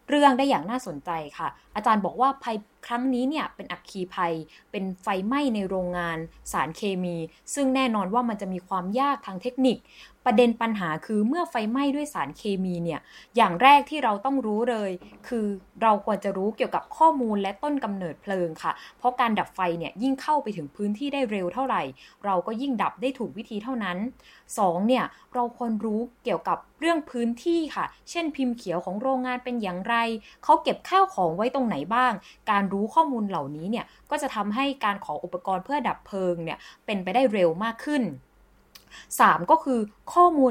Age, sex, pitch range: 20-39, female, 190-260 Hz